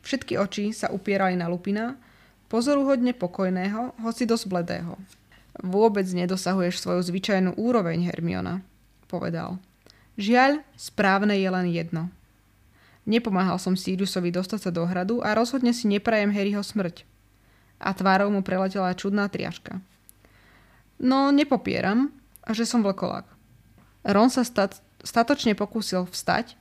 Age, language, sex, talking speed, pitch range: 20-39, Slovak, female, 120 wpm, 175-220 Hz